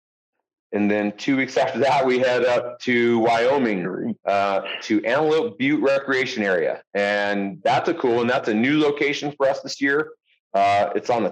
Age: 30-49